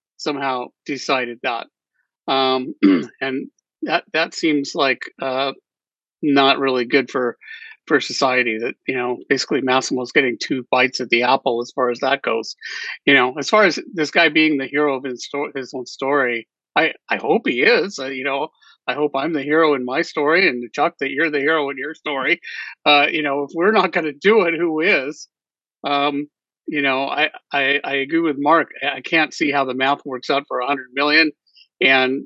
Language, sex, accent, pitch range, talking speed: English, male, American, 135-165 Hz, 195 wpm